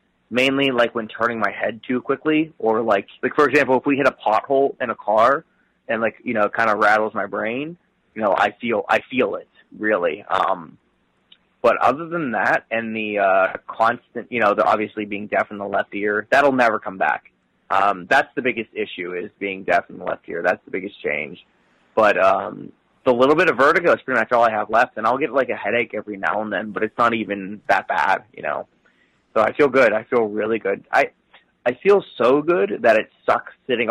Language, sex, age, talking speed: English, male, 20-39, 225 wpm